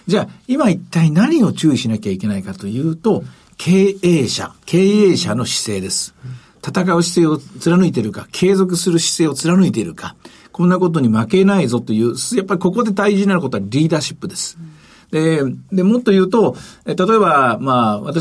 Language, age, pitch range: Japanese, 50-69, 125-190 Hz